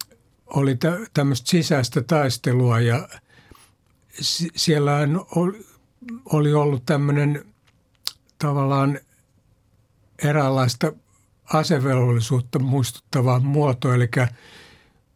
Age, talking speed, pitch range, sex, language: 60-79, 60 wpm, 120-150 Hz, male, Finnish